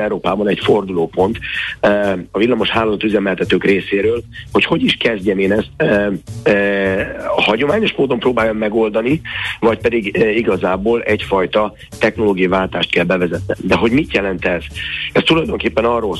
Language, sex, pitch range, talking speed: Hungarian, male, 90-105 Hz, 130 wpm